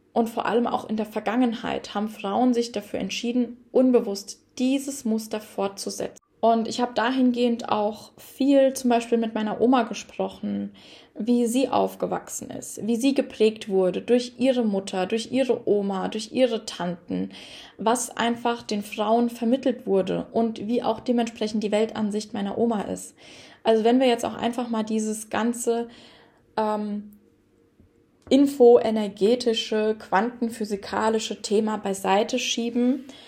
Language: German